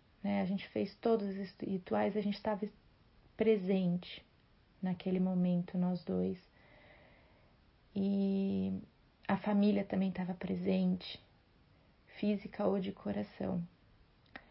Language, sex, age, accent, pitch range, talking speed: Portuguese, female, 30-49, Brazilian, 190-210 Hz, 100 wpm